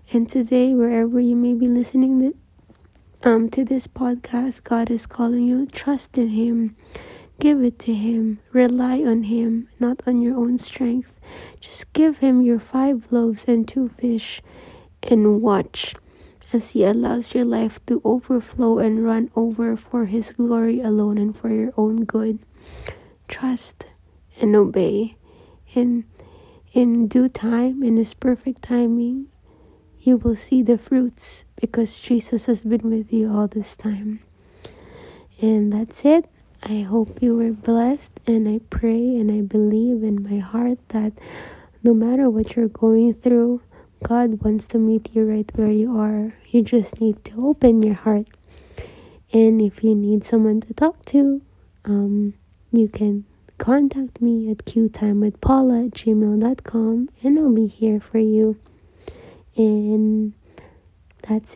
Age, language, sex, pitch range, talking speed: 20-39, English, female, 220-245 Hz, 145 wpm